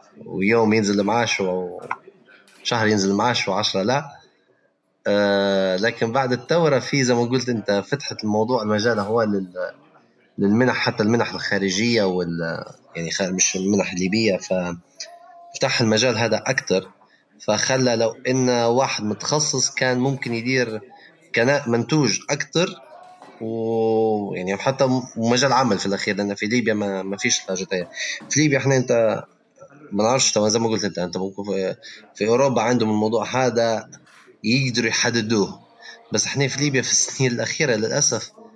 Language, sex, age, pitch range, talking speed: Arabic, male, 20-39, 100-130 Hz, 130 wpm